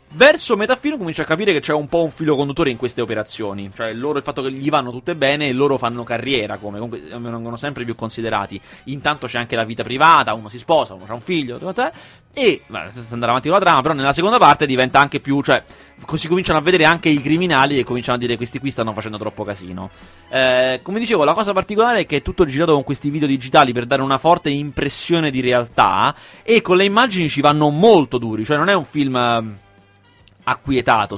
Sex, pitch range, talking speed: male, 115-150 Hz, 220 wpm